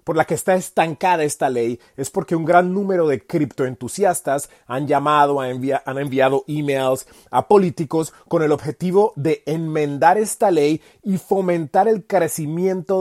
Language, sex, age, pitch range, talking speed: Spanish, male, 30-49, 145-190 Hz, 155 wpm